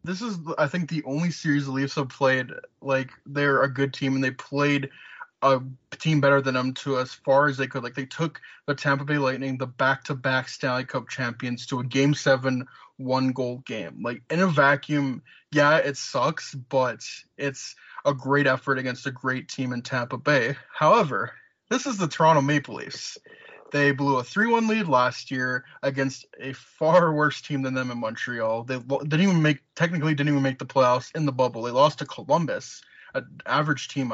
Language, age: English, 20-39